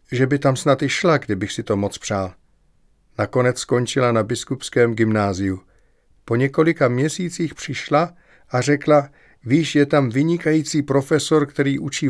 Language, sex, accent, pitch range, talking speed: Czech, male, native, 105-140 Hz, 145 wpm